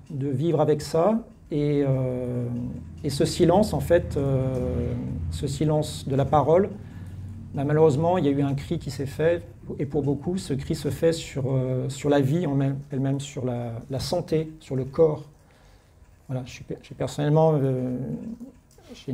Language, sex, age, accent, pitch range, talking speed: French, male, 40-59, French, 130-160 Hz, 180 wpm